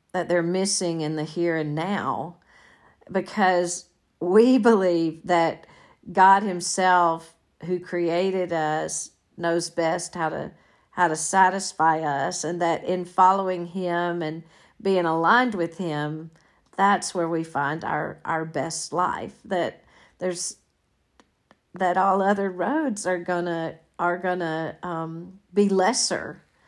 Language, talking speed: English, 130 wpm